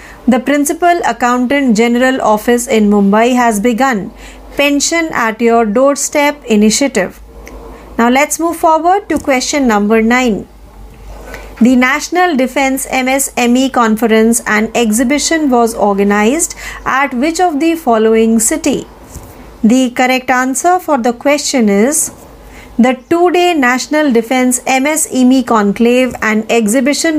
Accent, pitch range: native, 230-290 Hz